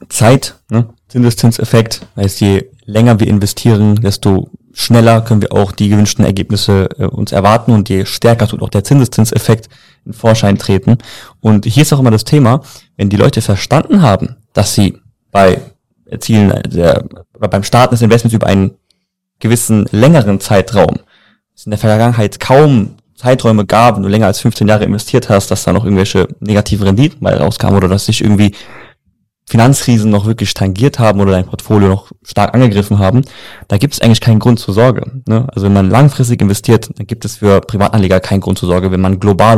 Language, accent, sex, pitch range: German, German, male, 100-120 Hz